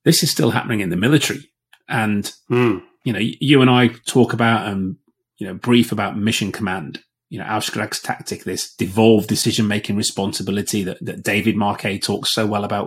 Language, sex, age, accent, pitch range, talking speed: English, male, 30-49, British, 100-125 Hz, 175 wpm